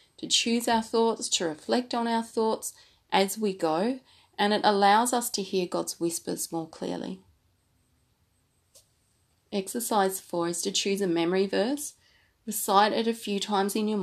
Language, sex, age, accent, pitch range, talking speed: English, female, 30-49, Australian, 165-210 Hz, 160 wpm